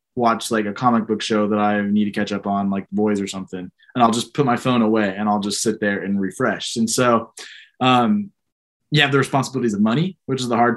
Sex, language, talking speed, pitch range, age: male, English, 245 wpm, 115-150 Hz, 20-39